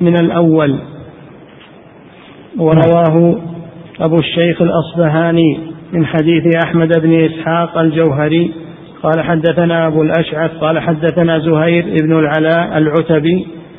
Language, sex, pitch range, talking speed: Arabic, male, 160-170 Hz, 95 wpm